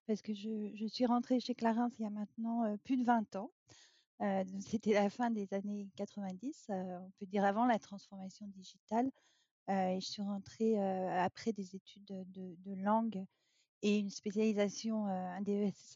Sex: female